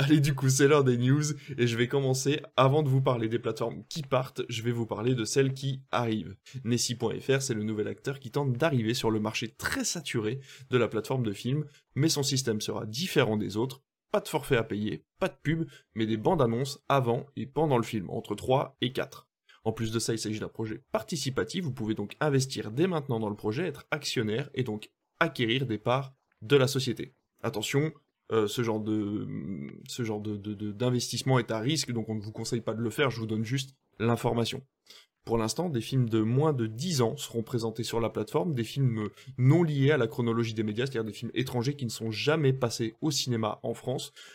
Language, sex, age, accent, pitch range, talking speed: French, male, 20-39, French, 110-140 Hz, 225 wpm